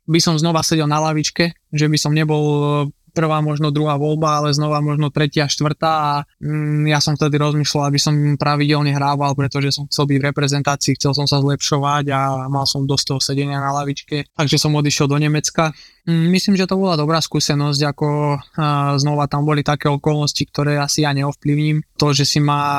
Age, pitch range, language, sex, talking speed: 20-39, 145-150 Hz, Slovak, male, 185 wpm